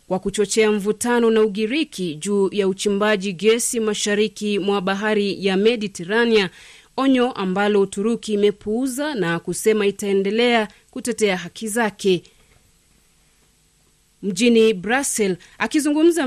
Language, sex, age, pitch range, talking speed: Swahili, female, 30-49, 195-230 Hz, 100 wpm